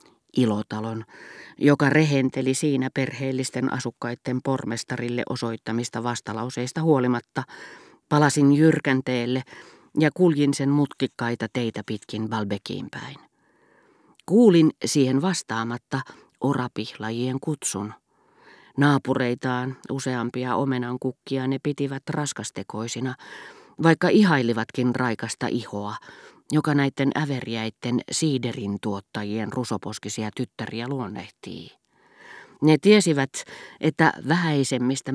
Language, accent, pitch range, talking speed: Finnish, native, 120-145 Hz, 80 wpm